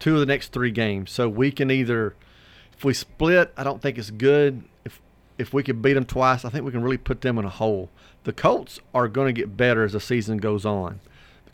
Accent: American